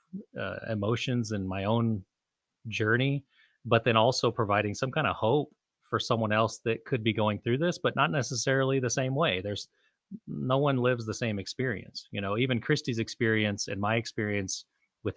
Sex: male